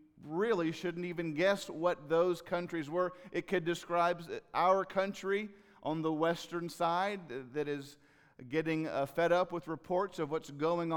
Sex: male